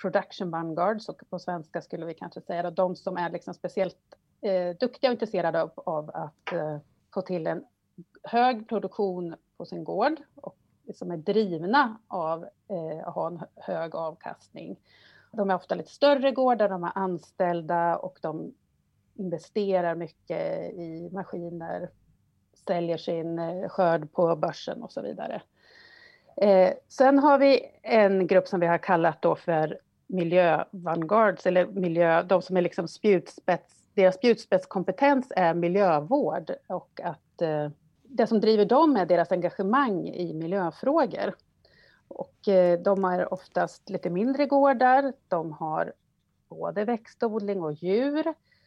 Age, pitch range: 30-49, 170-225 Hz